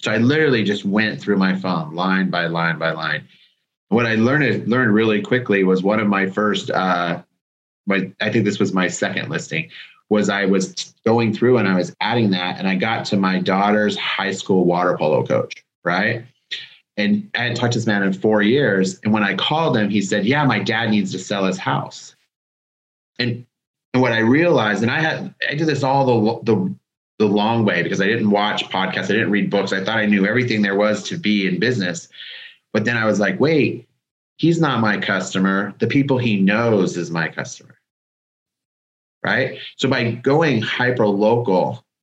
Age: 30-49